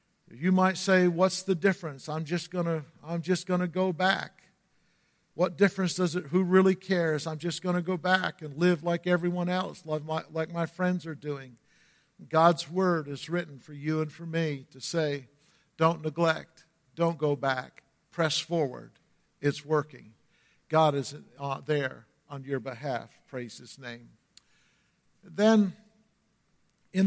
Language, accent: English, American